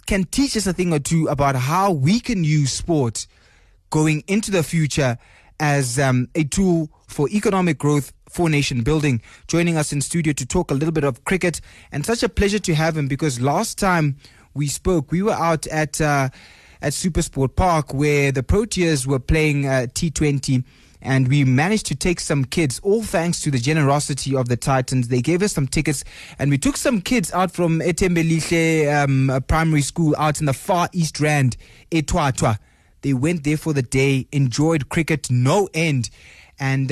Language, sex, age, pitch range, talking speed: English, male, 20-39, 135-170 Hz, 190 wpm